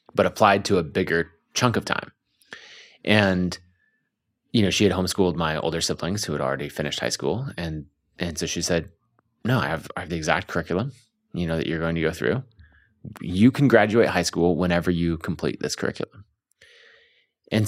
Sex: male